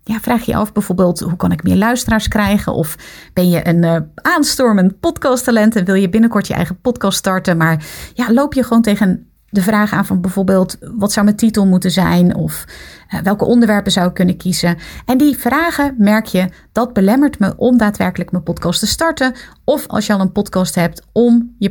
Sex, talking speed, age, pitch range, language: female, 205 wpm, 30-49, 180-250 Hz, Dutch